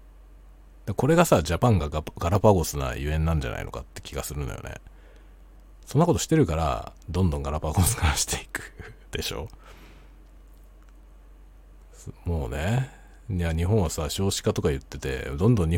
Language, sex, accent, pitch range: Japanese, male, native, 80-110 Hz